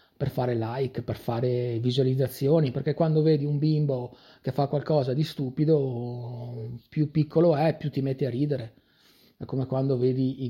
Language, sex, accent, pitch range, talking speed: Italian, male, native, 125-150 Hz, 165 wpm